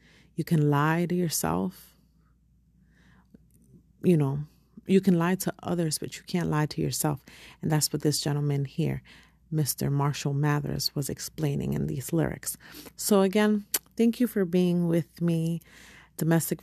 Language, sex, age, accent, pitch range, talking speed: English, female, 40-59, American, 155-185 Hz, 150 wpm